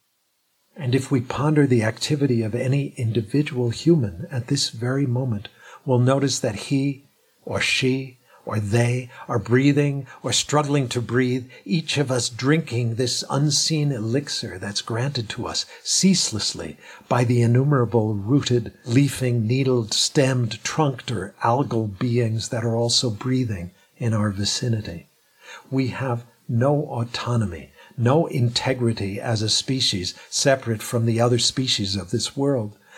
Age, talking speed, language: 50-69, 135 wpm, English